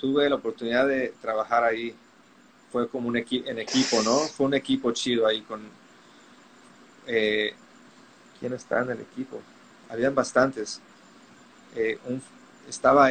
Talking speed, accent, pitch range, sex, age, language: 135 wpm, Mexican, 125-140 Hz, male, 30-49, Spanish